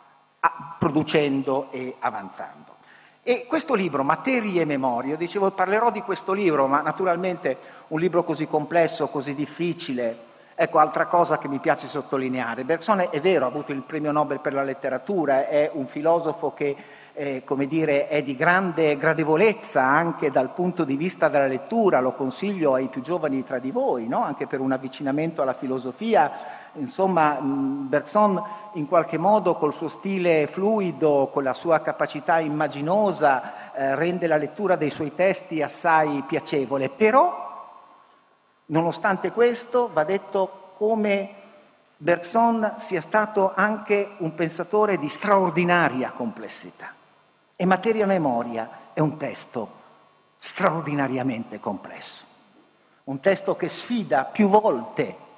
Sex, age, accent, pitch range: male, 50-69, native, 140-190 Hz